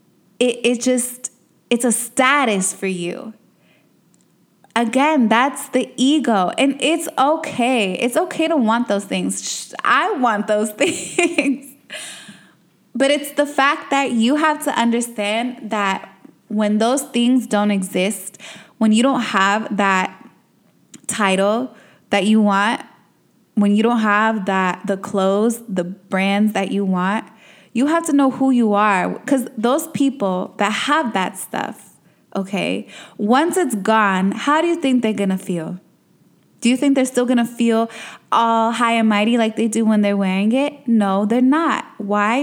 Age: 20-39